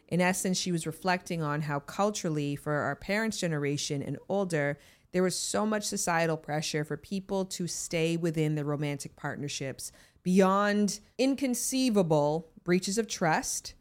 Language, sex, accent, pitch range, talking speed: English, female, American, 155-205 Hz, 145 wpm